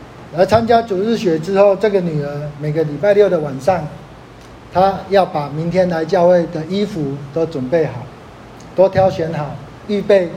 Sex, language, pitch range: male, Chinese, 150-190 Hz